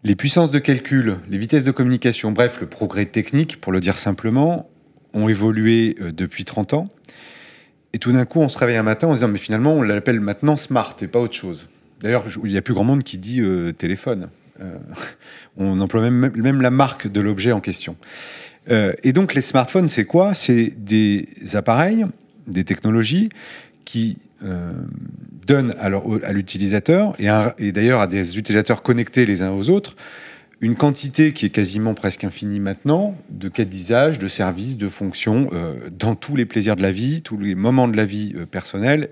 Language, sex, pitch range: French, male, 100-135 Hz